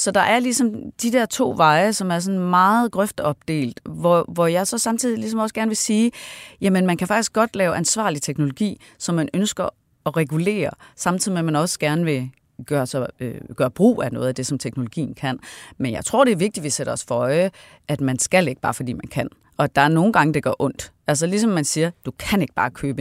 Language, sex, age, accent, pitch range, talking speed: Danish, female, 30-49, native, 140-185 Hz, 245 wpm